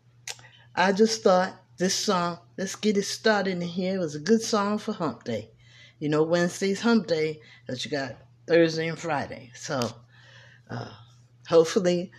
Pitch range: 120-170 Hz